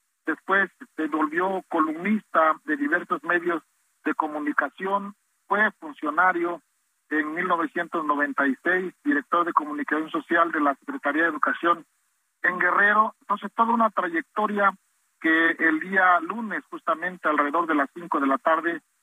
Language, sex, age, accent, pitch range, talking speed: Spanish, male, 50-69, Mexican, 155-200 Hz, 125 wpm